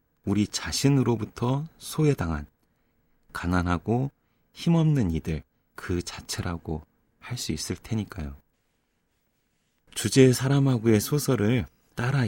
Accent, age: native, 30-49